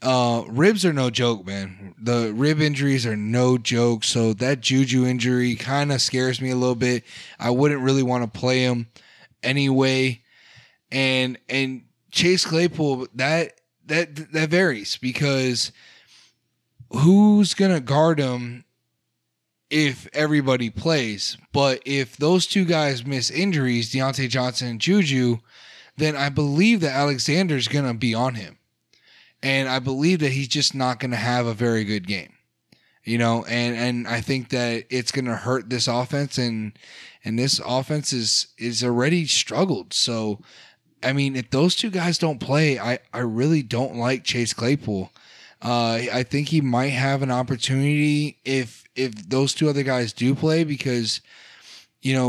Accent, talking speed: American, 155 wpm